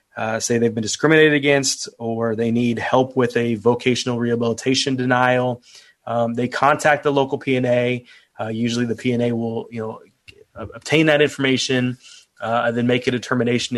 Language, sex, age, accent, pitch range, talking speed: English, male, 30-49, American, 115-130 Hz, 175 wpm